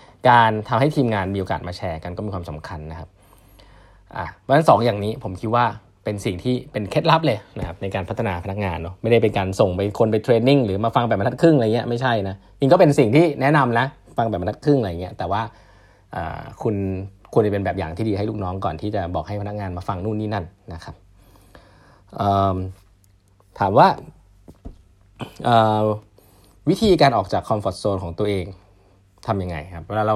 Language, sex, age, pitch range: English, male, 20-39, 95-120 Hz